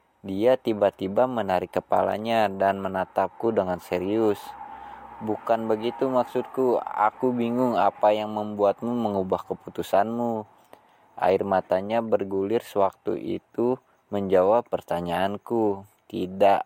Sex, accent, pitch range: male, Indonesian, 95-110 Hz